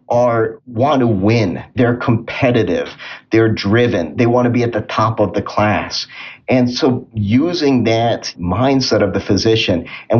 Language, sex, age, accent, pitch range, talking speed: English, male, 30-49, American, 100-120 Hz, 160 wpm